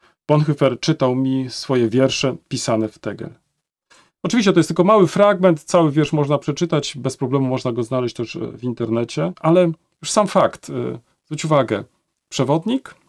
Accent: native